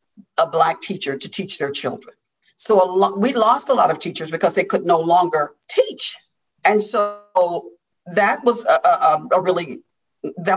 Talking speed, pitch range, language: 175 wpm, 175-235 Hz, English